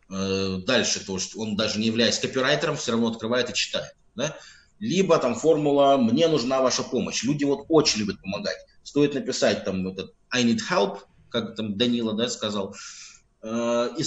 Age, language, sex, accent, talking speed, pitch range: 20-39, Russian, male, native, 170 wpm, 105-145 Hz